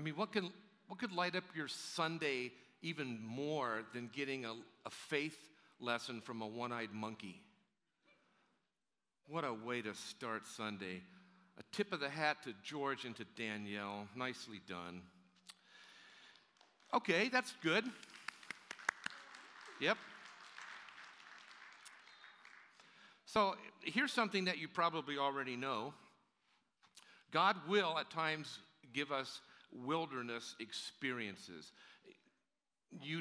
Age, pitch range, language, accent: 50-69, 110-150 Hz, English, American